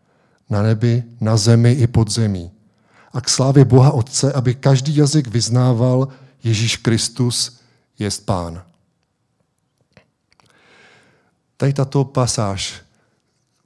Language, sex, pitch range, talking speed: Czech, male, 105-130 Hz, 105 wpm